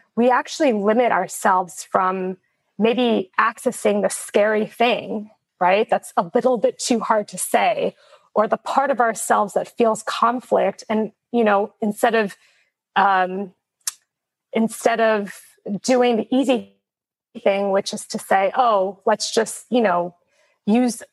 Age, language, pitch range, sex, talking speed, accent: 20-39, English, 190-235 Hz, female, 140 wpm, American